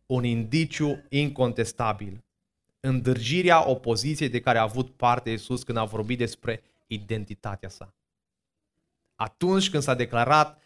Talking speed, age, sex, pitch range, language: 120 wpm, 20-39, male, 120-165 Hz, Romanian